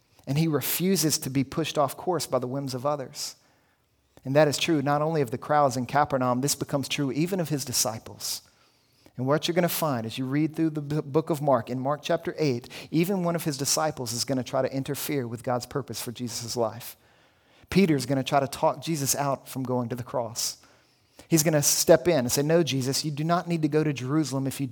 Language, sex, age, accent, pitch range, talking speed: English, male, 40-59, American, 135-170 Hz, 240 wpm